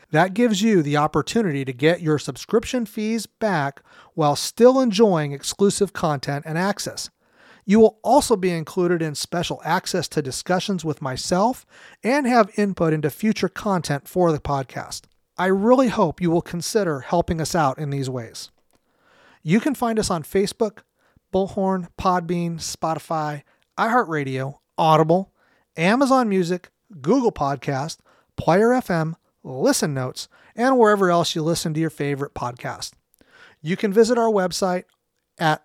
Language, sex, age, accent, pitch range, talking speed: English, male, 40-59, American, 150-205 Hz, 140 wpm